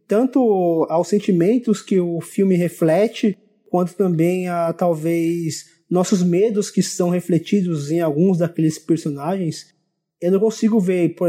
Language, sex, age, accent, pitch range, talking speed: Portuguese, male, 20-39, Brazilian, 160-195 Hz, 135 wpm